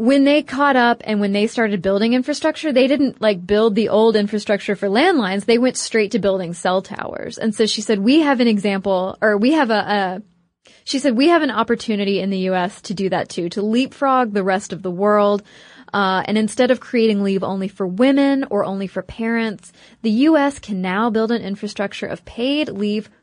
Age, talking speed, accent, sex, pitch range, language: 20-39, 215 wpm, American, female, 195-240 Hz, English